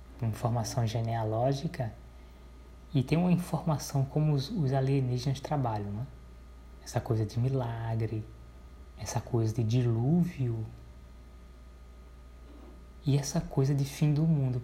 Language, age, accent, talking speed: Portuguese, 20-39, Brazilian, 110 wpm